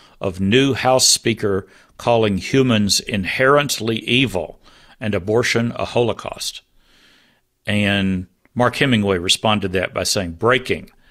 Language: English